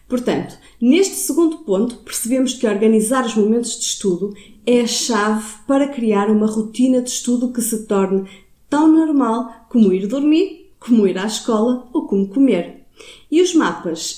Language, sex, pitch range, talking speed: Portuguese, female, 205-255 Hz, 160 wpm